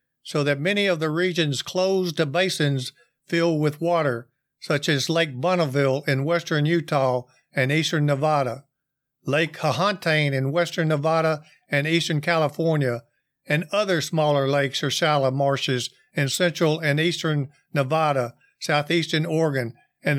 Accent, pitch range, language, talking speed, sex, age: American, 140-175 Hz, English, 135 wpm, male, 50-69